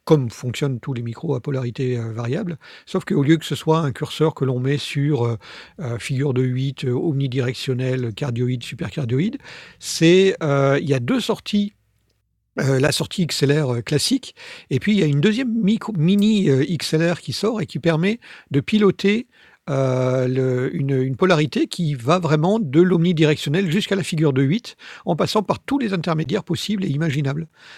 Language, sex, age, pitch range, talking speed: French, male, 50-69, 130-175 Hz, 170 wpm